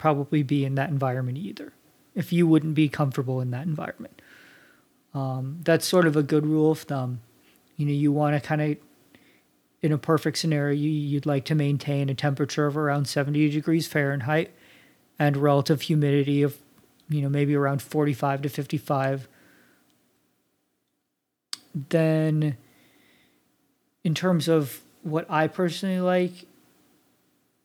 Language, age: English, 40-59